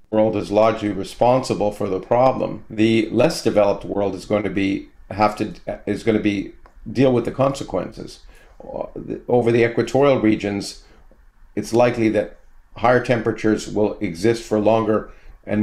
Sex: male